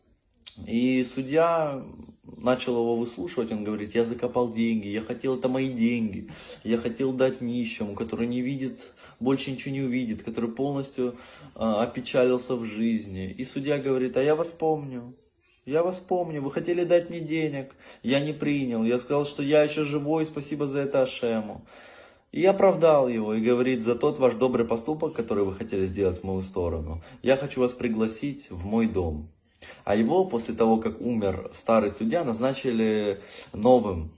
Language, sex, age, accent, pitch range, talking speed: Russian, male, 20-39, native, 105-135 Hz, 165 wpm